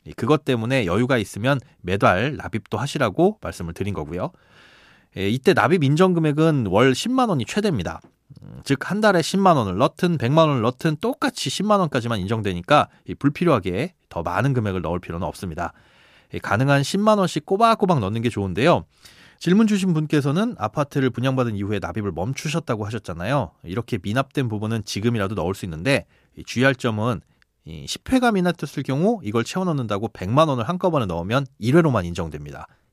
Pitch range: 105-165 Hz